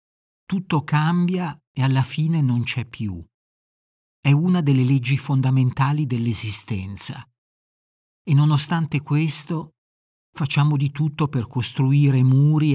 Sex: male